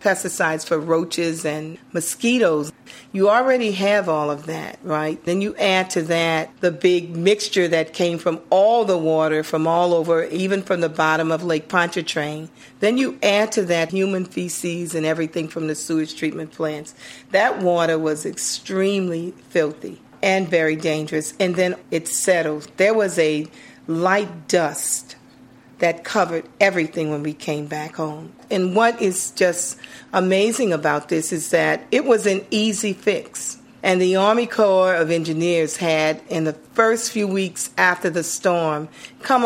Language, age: English, 40-59